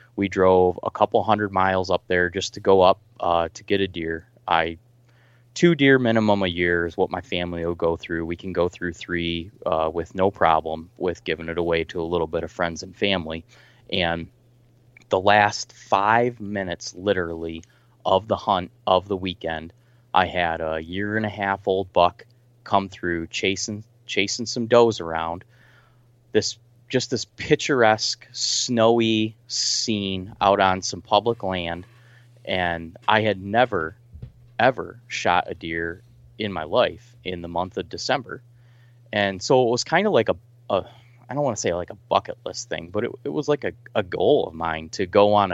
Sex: male